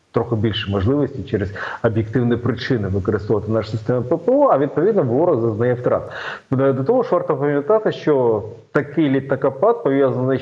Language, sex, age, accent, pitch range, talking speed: Ukrainian, male, 40-59, native, 110-130 Hz, 140 wpm